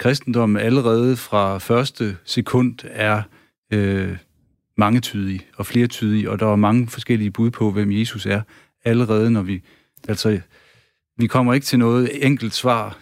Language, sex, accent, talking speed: Danish, male, native, 145 wpm